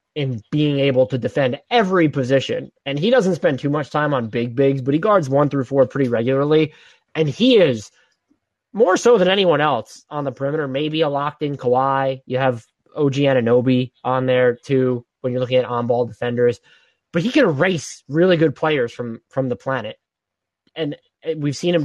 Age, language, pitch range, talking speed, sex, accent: 20-39, English, 125-160 Hz, 190 wpm, male, American